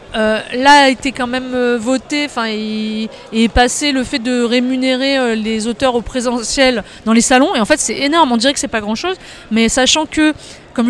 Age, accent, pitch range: 30-49, French, 215-255 Hz